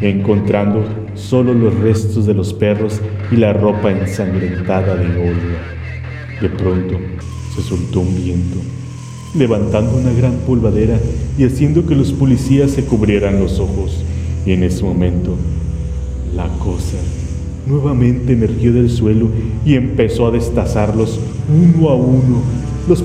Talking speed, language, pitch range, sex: 130 wpm, Spanish, 100-125 Hz, male